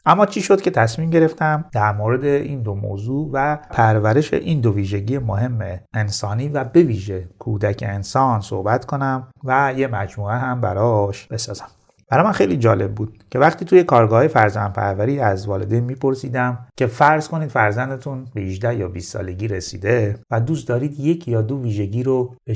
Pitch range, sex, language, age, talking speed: 105-140 Hz, male, Persian, 30-49, 170 wpm